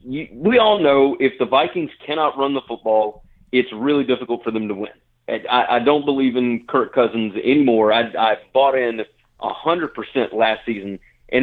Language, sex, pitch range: English, male, 115-155 Hz